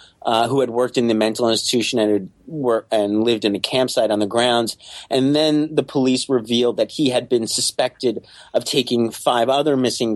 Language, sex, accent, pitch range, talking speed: English, male, American, 110-130 Hz, 200 wpm